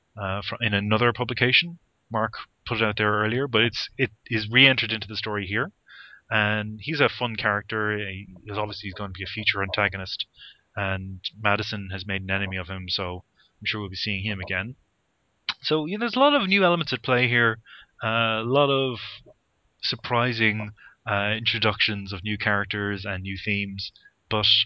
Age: 20-39